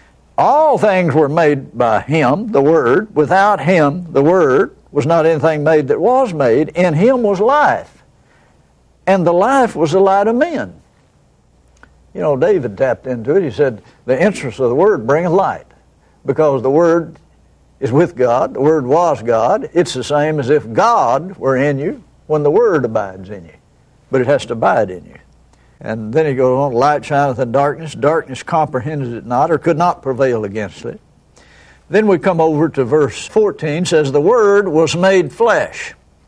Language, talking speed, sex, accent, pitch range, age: English, 185 wpm, male, American, 130-170 Hz, 60-79